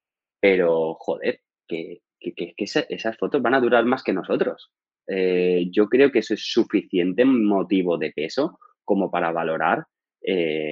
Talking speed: 150 wpm